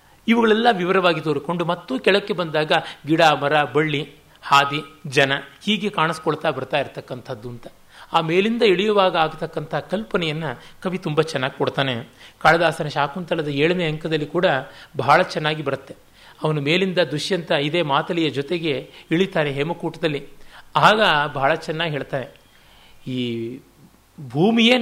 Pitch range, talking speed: 145-175 Hz, 115 wpm